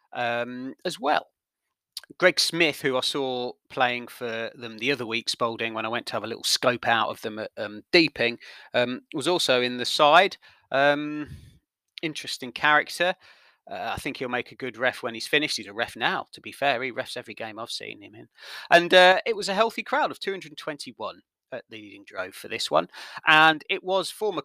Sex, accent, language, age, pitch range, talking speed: male, British, English, 30-49, 125-160 Hz, 205 wpm